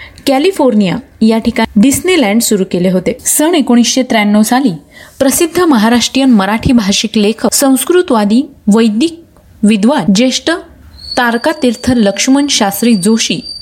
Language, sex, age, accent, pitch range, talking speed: Marathi, female, 30-49, native, 210-275 Hz, 105 wpm